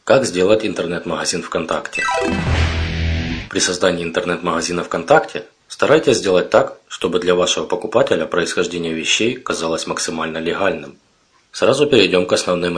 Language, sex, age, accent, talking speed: Russian, male, 20-39, native, 115 wpm